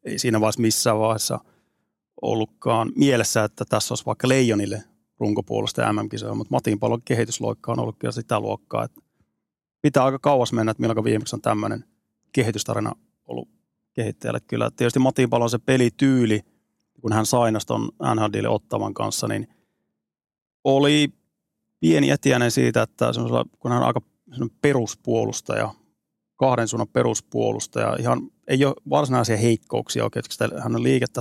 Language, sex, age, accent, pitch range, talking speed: Finnish, male, 30-49, native, 110-130 Hz, 135 wpm